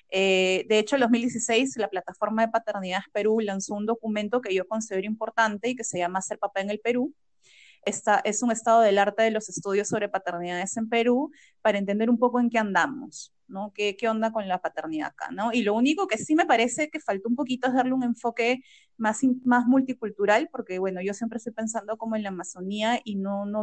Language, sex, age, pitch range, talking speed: Spanish, female, 30-49, 205-250 Hz, 220 wpm